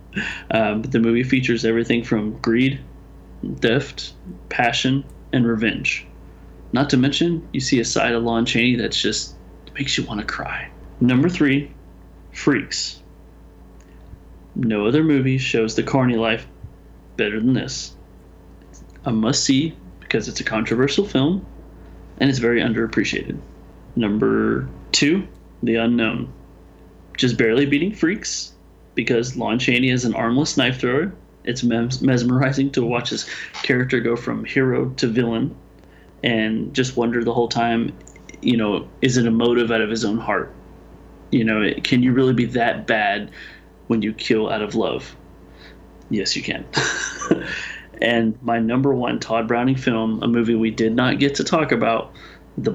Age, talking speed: 30-49, 150 wpm